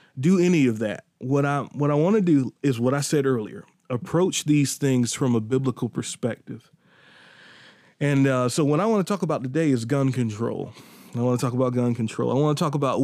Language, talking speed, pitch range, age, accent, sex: English, 220 wpm, 125-160 Hz, 20-39, American, male